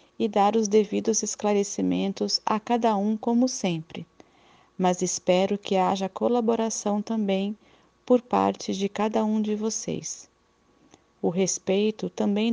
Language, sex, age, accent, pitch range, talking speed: Portuguese, female, 40-59, Brazilian, 195-225 Hz, 125 wpm